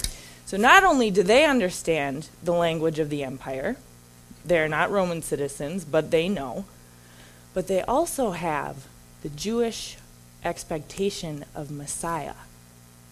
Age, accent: 20-39, American